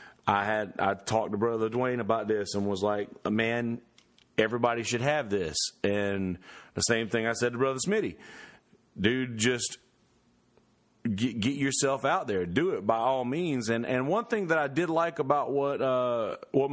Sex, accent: male, American